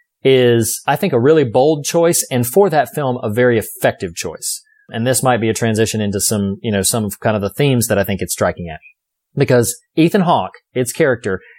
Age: 30-49